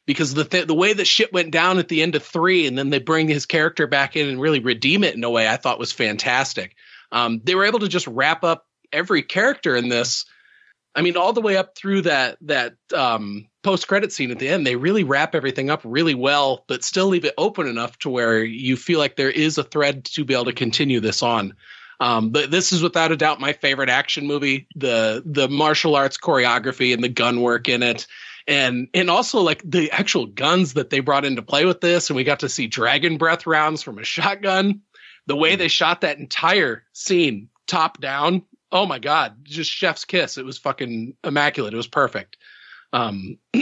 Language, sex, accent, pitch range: English, male, American, 125-165 Hz